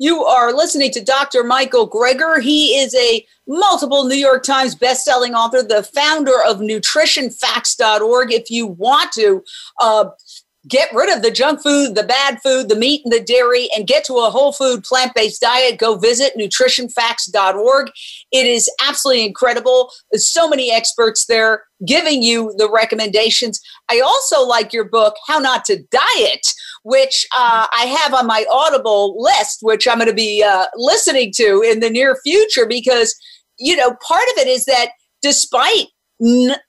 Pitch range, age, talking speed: 230-305 Hz, 50-69, 170 wpm